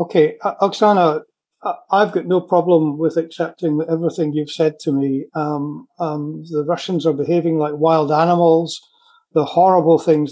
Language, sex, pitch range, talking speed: English, male, 155-185 Hz, 145 wpm